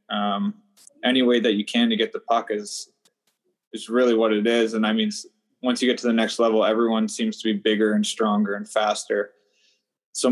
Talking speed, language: 210 wpm, English